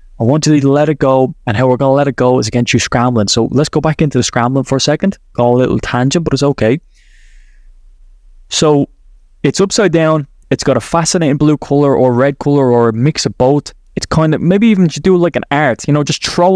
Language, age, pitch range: English, 20-39, 135-185 Hz